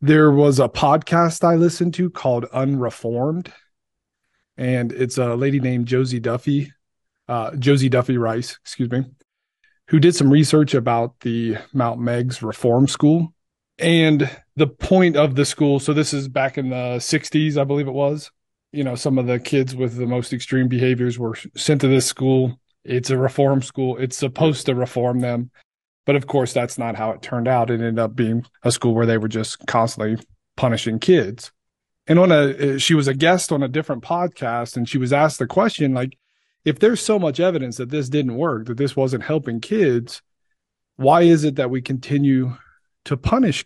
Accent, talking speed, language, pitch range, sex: American, 185 wpm, English, 125-150 Hz, male